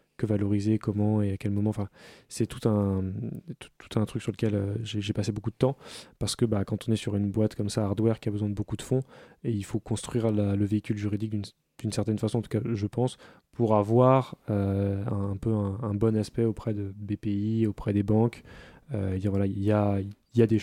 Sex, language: male, French